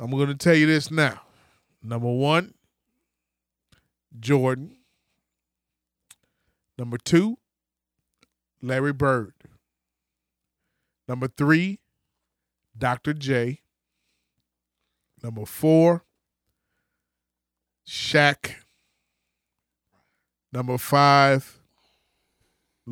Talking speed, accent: 60 wpm, American